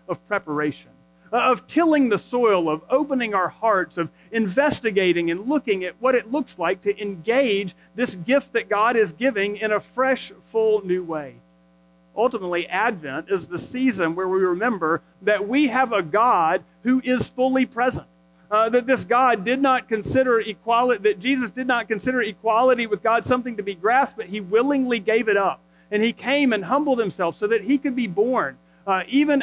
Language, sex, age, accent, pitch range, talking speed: English, male, 40-59, American, 175-250 Hz, 185 wpm